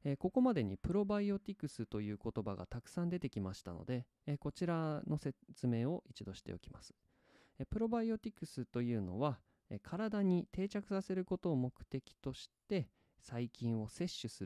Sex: male